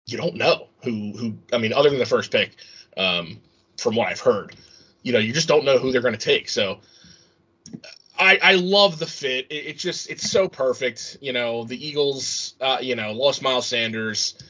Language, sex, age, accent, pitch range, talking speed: English, male, 20-39, American, 110-145 Hz, 205 wpm